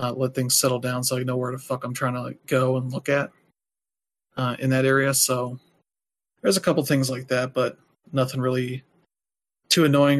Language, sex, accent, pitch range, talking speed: English, male, American, 130-140 Hz, 205 wpm